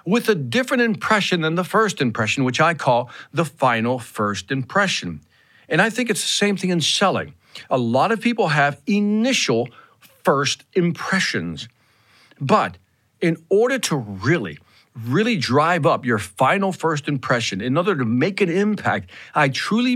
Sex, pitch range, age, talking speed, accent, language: male, 125-210 Hz, 50-69, 155 wpm, American, English